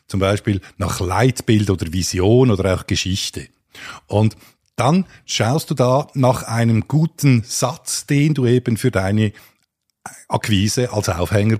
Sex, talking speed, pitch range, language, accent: male, 135 wpm, 95-125 Hz, German, Austrian